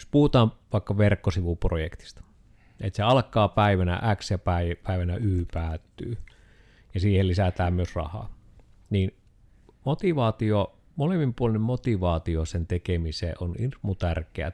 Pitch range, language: 90-120 Hz, Finnish